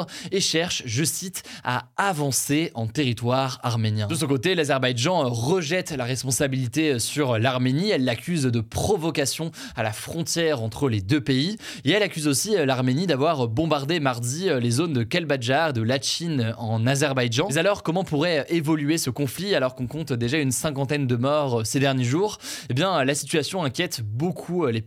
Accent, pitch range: French, 125-160 Hz